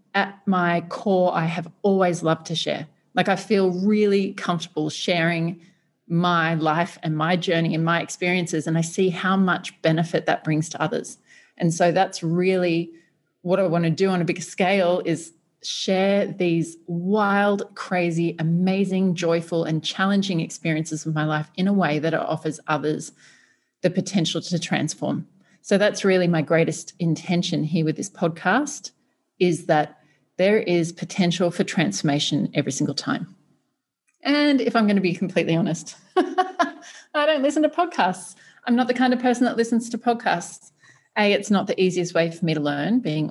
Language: English